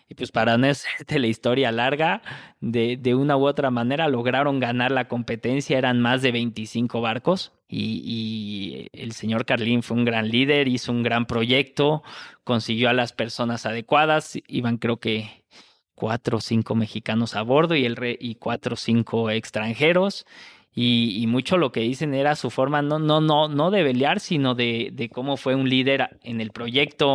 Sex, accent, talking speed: male, Mexican, 175 wpm